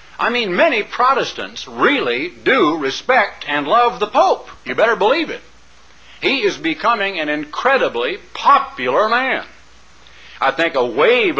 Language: English